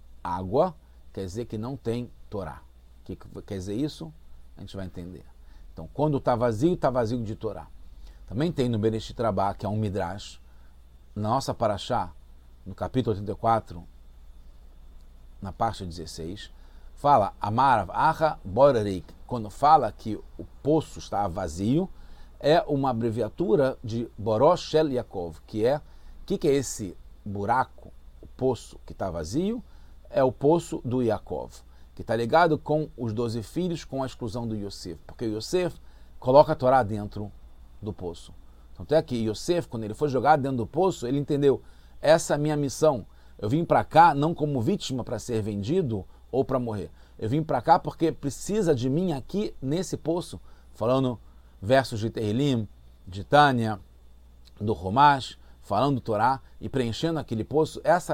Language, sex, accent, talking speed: English, male, Brazilian, 160 wpm